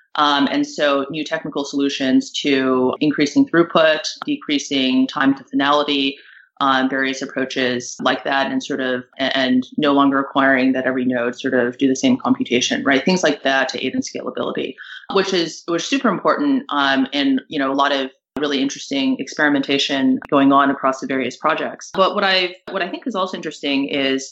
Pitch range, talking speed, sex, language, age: 135-165 Hz, 185 wpm, female, English, 30-49